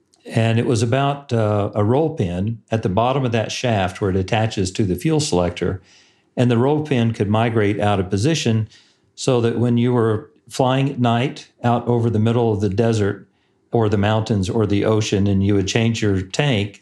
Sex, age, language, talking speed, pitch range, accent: male, 50-69, English, 205 wpm, 100-125 Hz, American